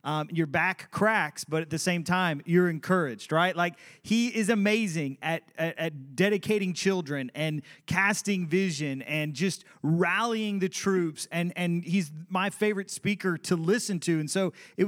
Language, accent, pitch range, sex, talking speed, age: English, American, 150-185 Hz, male, 165 wpm, 30-49